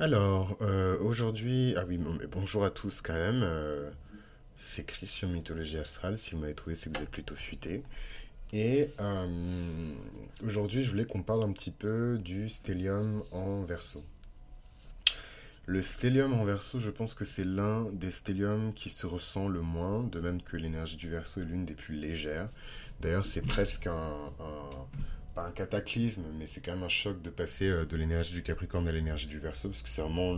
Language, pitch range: French, 80-105 Hz